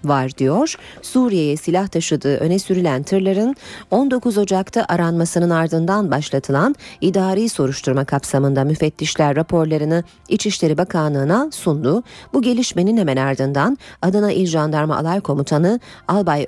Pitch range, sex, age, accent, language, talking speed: 140-205 Hz, female, 30-49, native, Turkish, 115 wpm